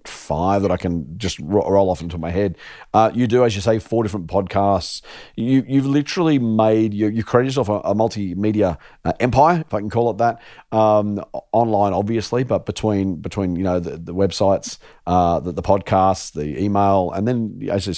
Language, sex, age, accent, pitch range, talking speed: English, male, 40-59, Australian, 95-115 Hz, 195 wpm